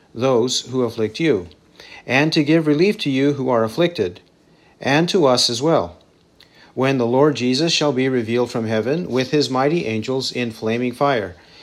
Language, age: English, 50-69